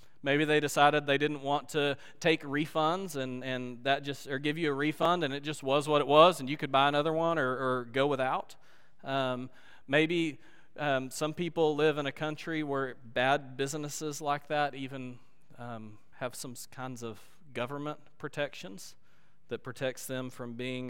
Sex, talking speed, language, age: male, 180 wpm, English, 40-59